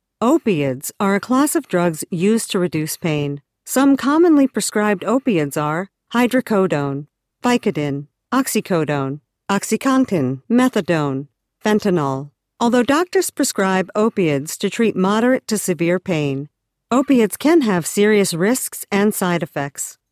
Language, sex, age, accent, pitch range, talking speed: English, female, 50-69, American, 165-245 Hz, 115 wpm